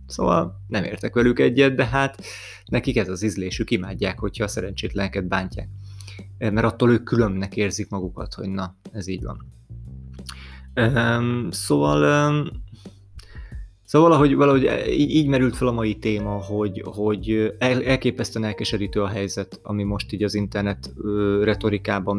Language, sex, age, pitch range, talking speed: Hungarian, male, 30-49, 100-120 Hz, 135 wpm